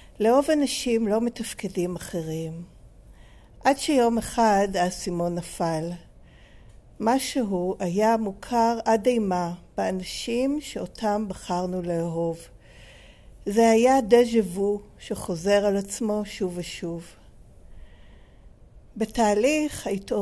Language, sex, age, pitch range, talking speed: Hebrew, female, 50-69, 185-230 Hz, 85 wpm